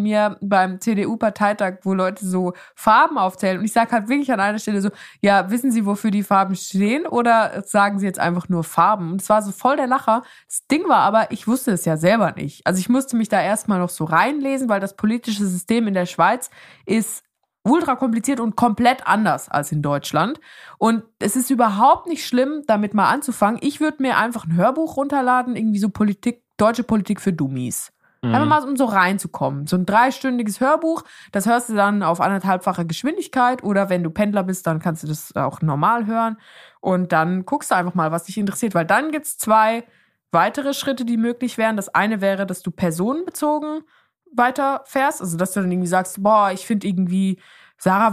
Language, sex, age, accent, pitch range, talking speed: German, female, 20-39, German, 185-240 Hz, 200 wpm